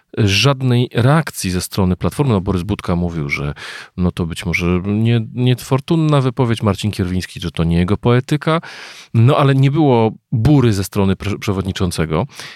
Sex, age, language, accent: male, 40-59, Polish, native